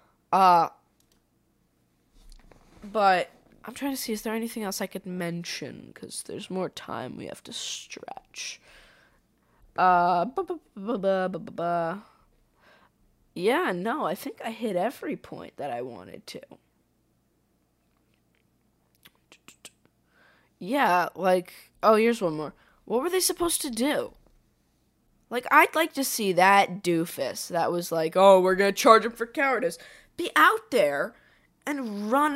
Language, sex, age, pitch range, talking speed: English, female, 10-29, 175-265 Hz, 125 wpm